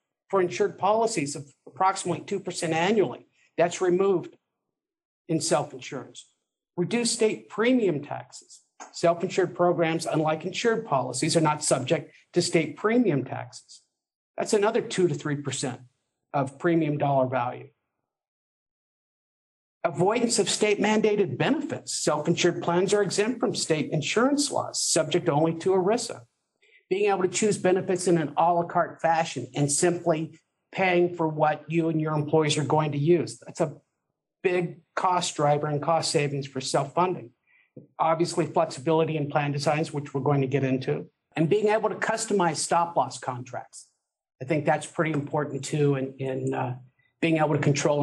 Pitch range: 145-185 Hz